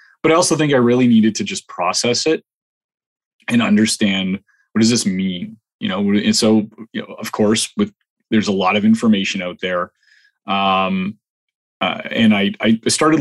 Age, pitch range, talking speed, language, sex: 30-49, 105-150 Hz, 175 wpm, English, male